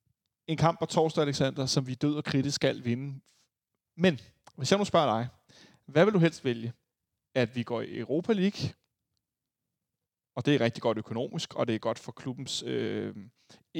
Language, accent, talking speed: Danish, native, 185 wpm